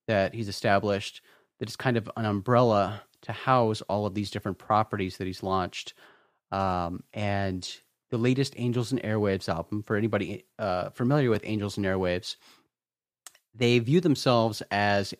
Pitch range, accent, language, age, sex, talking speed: 95-120 Hz, American, English, 30-49, male, 155 wpm